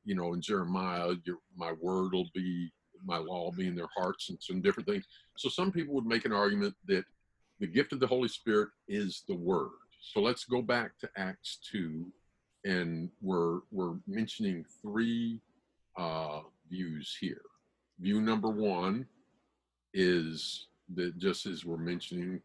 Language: English